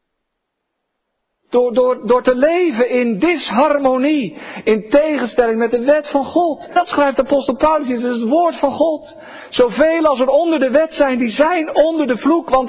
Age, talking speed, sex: 50-69, 175 wpm, male